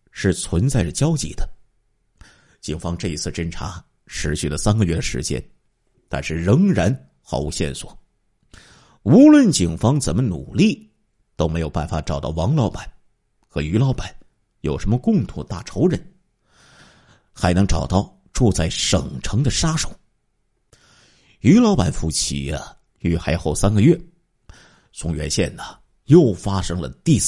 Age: 50-69